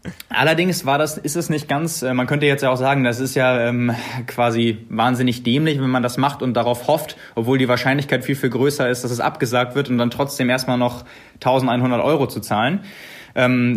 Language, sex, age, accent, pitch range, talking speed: German, male, 30-49, German, 125-145 Hz, 210 wpm